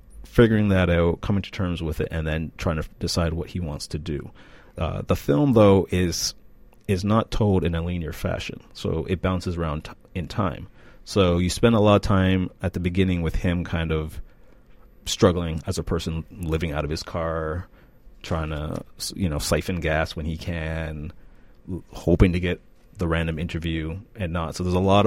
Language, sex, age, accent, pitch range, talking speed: English, male, 30-49, American, 80-100 Hz, 190 wpm